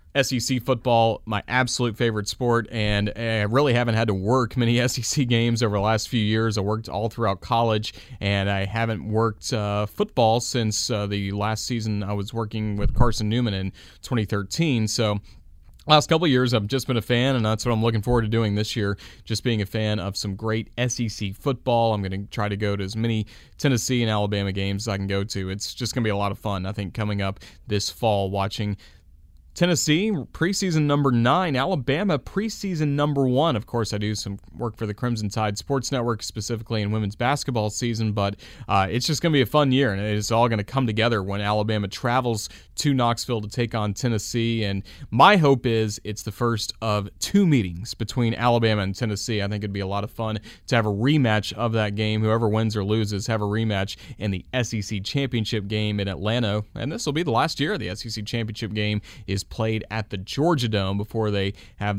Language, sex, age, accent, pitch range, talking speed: English, male, 30-49, American, 100-120 Hz, 215 wpm